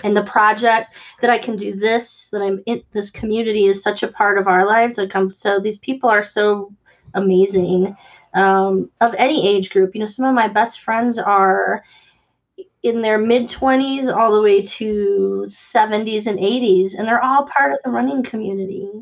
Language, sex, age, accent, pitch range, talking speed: English, female, 30-49, American, 195-235 Hz, 185 wpm